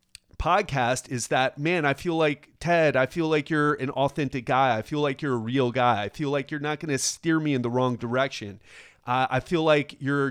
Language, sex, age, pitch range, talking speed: English, male, 30-49, 125-165 Hz, 240 wpm